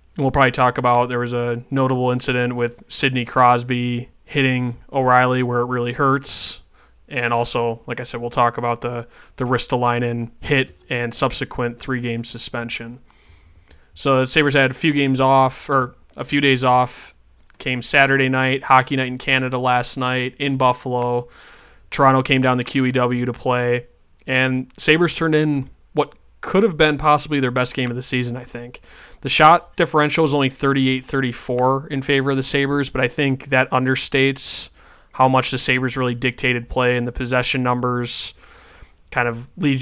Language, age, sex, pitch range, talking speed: English, 20-39, male, 120-135 Hz, 170 wpm